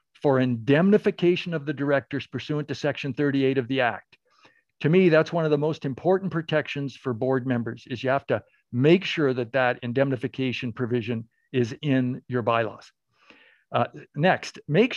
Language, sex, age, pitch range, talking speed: English, male, 50-69, 130-170 Hz, 165 wpm